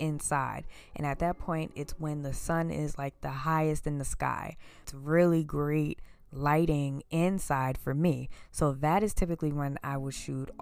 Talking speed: 175 wpm